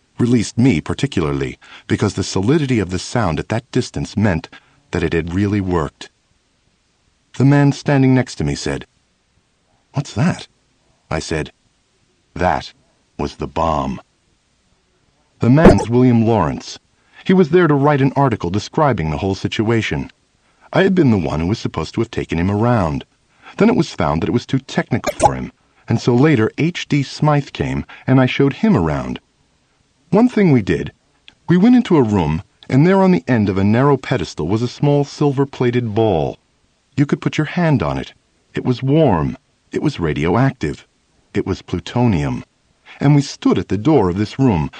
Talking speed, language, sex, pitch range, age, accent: 175 wpm, English, male, 95-145 Hz, 50-69, American